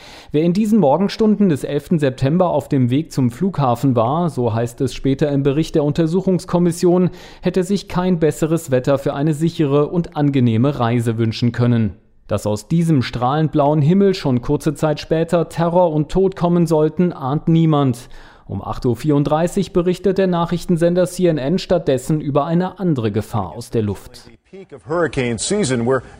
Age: 40-59